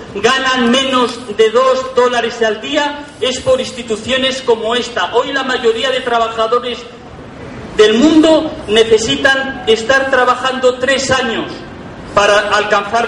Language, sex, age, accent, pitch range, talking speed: Spanish, male, 40-59, Spanish, 220-270 Hz, 120 wpm